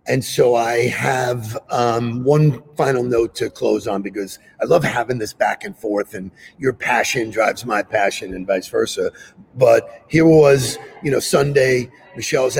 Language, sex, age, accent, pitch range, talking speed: English, male, 50-69, American, 110-130 Hz, 165 wpm